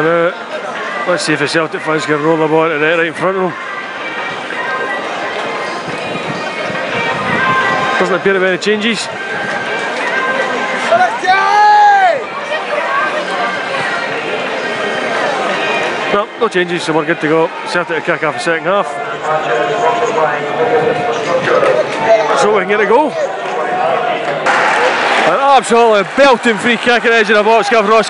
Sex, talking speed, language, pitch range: male, 125 wpm, English, 195-315 Hz